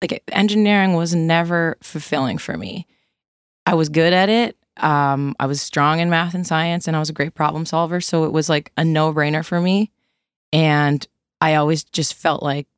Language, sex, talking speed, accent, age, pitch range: English, female, 195 wpm, American, 20-39, 155-180 Hz